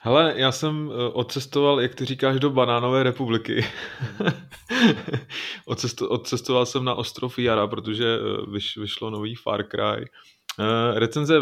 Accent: native